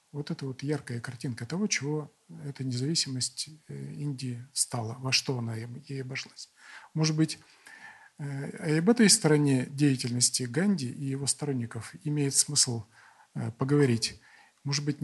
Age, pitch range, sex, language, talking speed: 40-59, 125-150 Hz, male, Russian, 125 wpm